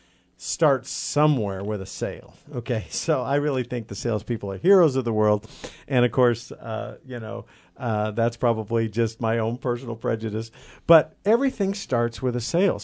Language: English